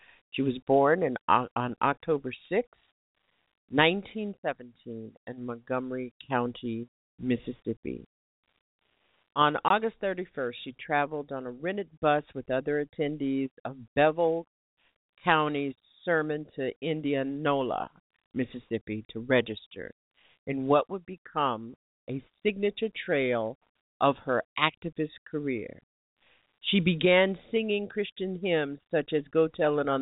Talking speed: 110 wpm